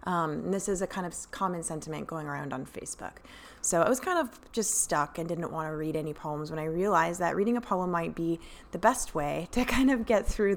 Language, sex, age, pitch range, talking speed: English, female, 20-39, 155-190 Hz, 245 wpm